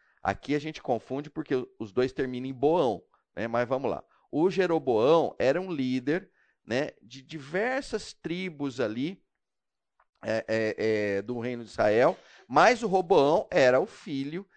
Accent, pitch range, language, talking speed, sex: Brazilian, 115-155 Hz, Portuguese, 140 wpm, male